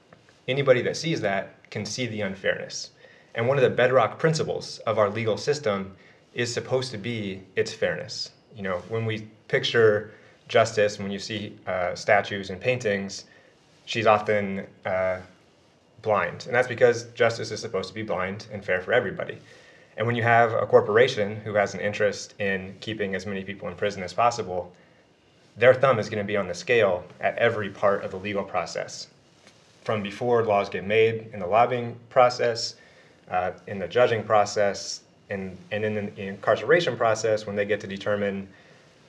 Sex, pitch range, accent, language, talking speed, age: male, 100-115 Hz, American, English, 175 wpm, 30-49